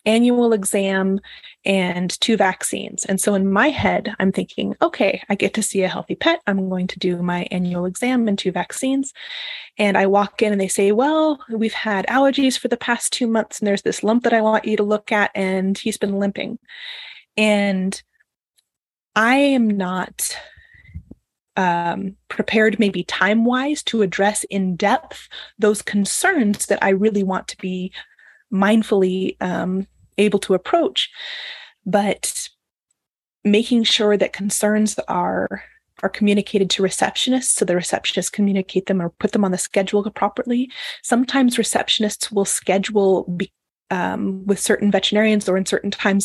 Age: 20-39